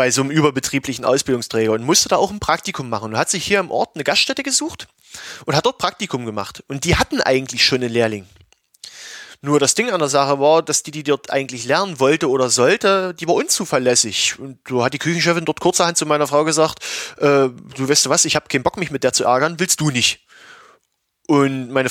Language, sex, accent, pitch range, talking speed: German, male, German, 135-175 Hz, 225 wpm